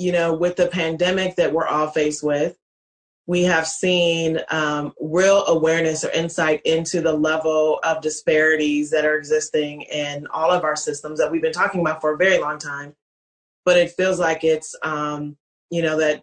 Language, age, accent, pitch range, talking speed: English, 30-49, American, 155-175 Hz, 185 wpm